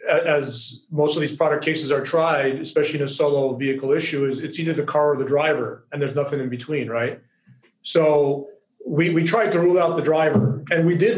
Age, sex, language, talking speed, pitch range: 40-59, male, English, 215 wpm, 150-170 Hz